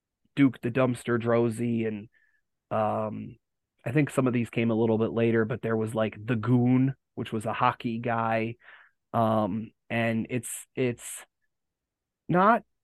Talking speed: 150 wpm